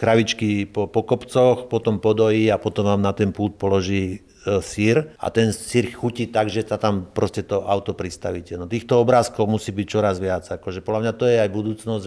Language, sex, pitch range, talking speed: Slovak, male, 105-125 Hz, 200 wpm